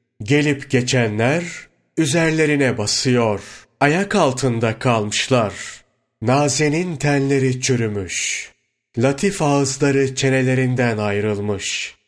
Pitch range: 115-145 Hz